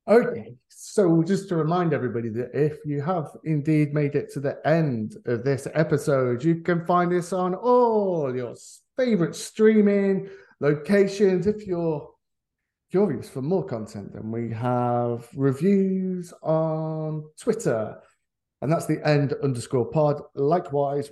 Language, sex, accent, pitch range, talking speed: English, male, British, 125-175 Hz, 135 wpm